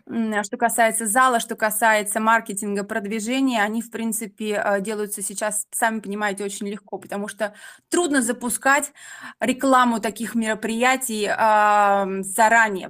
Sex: female